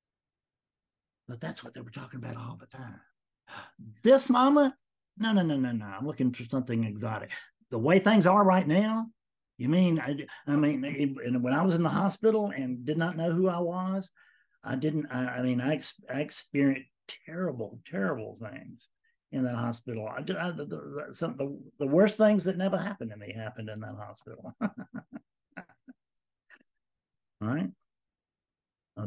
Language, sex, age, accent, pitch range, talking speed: English, male, 60-79, American, 125-185 Hz, 170 wpm